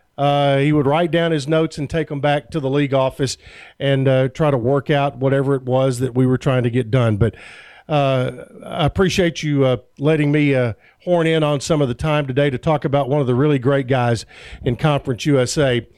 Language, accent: English, American